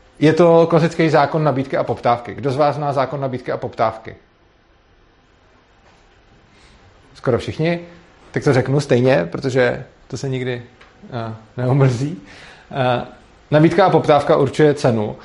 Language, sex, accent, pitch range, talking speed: Czech, male, native, 115-145 Hz, 120 wpm